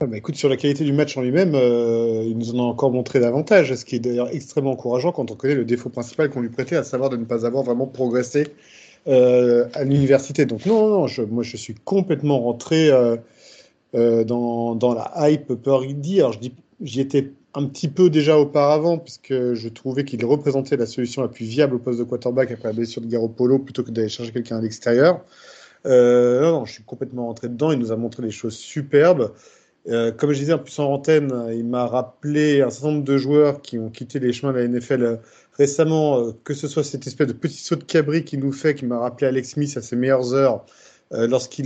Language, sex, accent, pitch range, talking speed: French, male, French, 120-150 Hz, 240 wpm